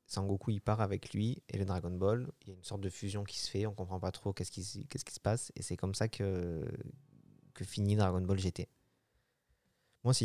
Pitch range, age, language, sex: 95-110 Hz, 20-39, French, male